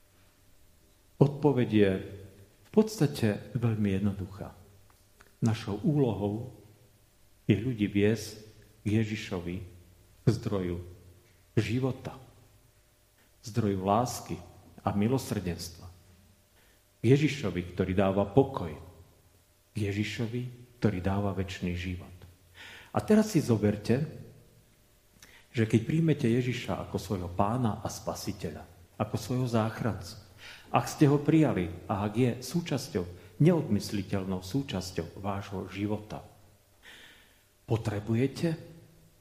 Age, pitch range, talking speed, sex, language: 40-59, 100-135 Hz, 90 wpm, male, Slovak